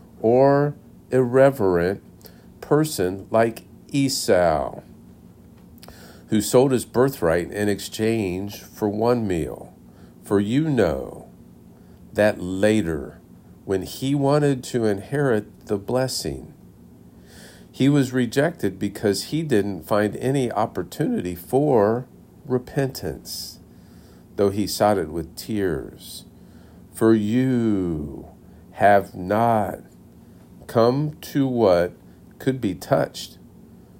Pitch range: 80-125 Hz